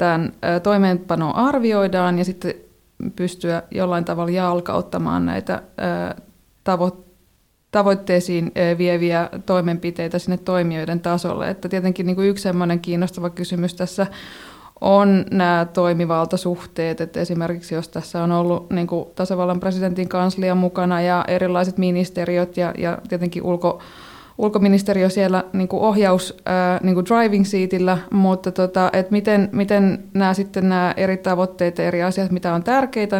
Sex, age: female, 20-39